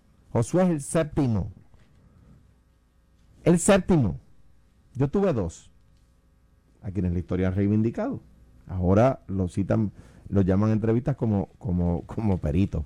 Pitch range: 85-115 Hz